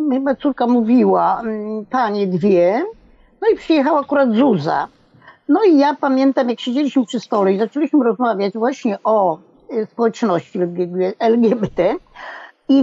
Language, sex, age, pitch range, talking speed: Polish, female, 50-69, 210-280 Hz, 120 wpm